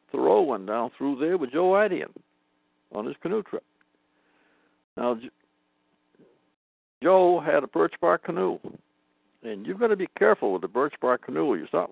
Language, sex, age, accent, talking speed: English, male, 60-79, American, 160 wpm